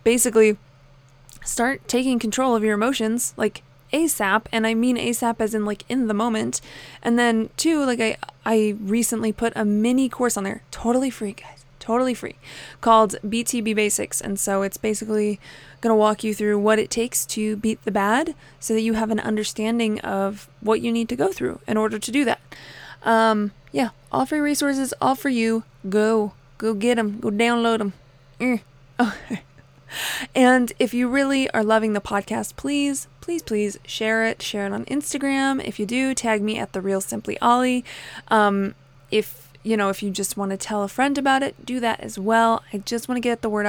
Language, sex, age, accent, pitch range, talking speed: English, female, 20-39, American, 205-250 Hz, 195 wpm